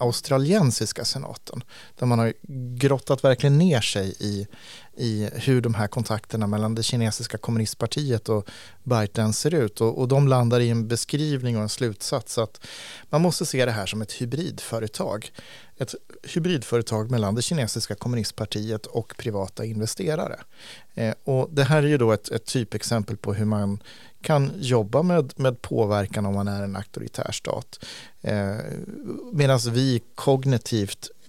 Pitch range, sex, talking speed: 110-135 Hz, male, 150 wpm